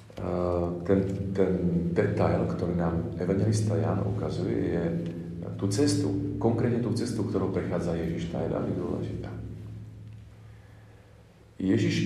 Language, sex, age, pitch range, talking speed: Slovak, male, 40-59, 95-110 Hz, 105 wpm